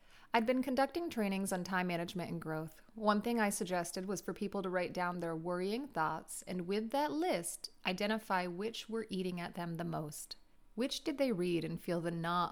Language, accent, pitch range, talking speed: English, American, 170-210 Hz, 200 wpm